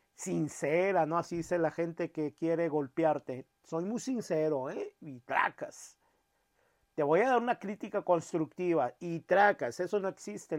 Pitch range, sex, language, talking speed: 165-200 Hz, male, Spanish, 155 wpm